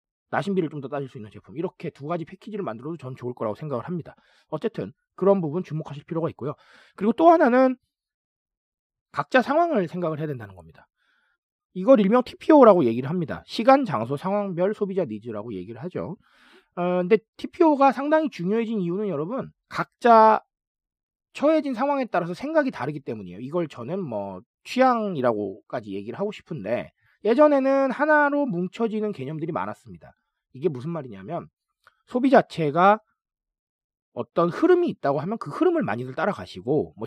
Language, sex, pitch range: Korean, male, 155-255 Hz